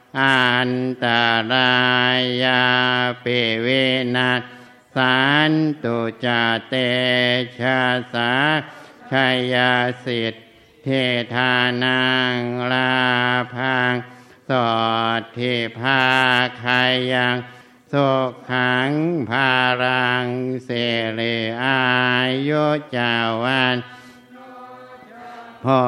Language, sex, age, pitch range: Thai, male, 60-79, 125-130 Hz